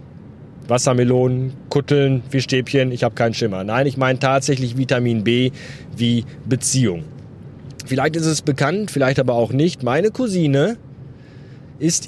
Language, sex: German, male